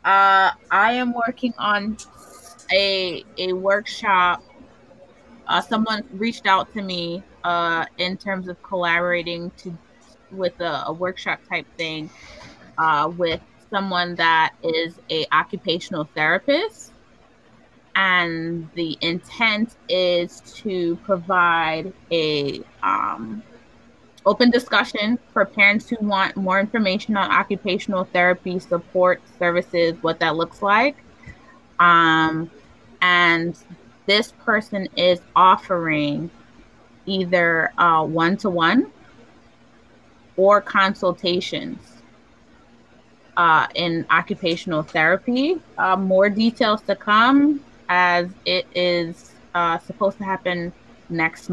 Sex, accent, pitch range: female, American, 170-200 Hz